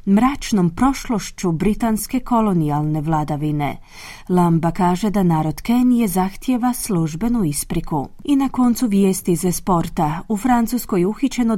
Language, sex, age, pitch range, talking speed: Croatian, female, 30-49, 170-225 Hz, 120 wpm